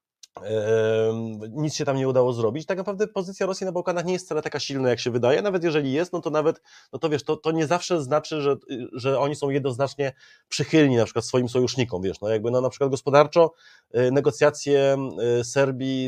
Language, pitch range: Polish, 120-145 Hz